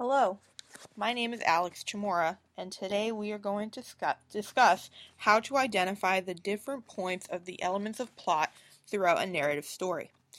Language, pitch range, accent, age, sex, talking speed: English, 175-225 Hz, American, 20-39, female, 160 wpm